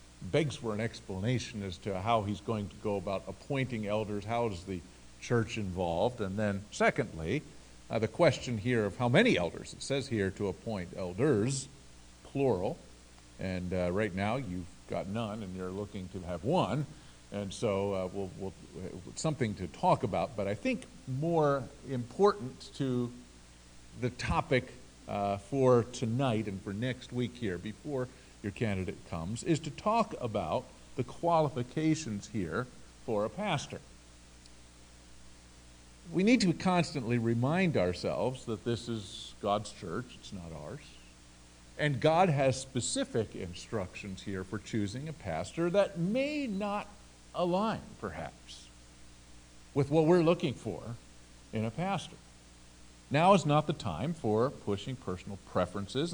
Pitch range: 90-135 Hz